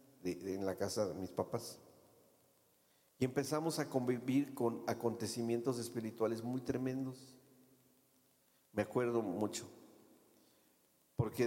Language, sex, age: Spanish, male, 50-69